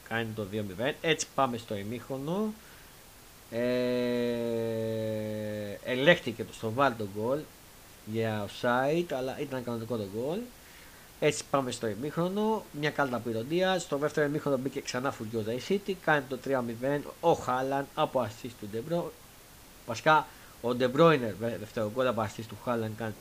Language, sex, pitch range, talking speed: Greek, male, 110-140 Hz, 145 wpm